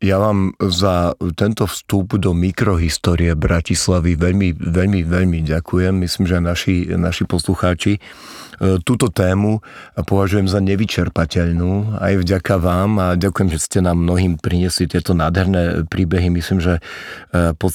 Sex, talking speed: male, 130 wpm